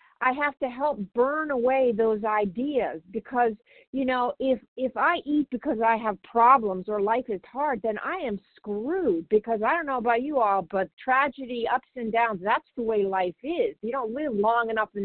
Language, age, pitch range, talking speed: English, 50-69, 215-275 Hz, 200 wpm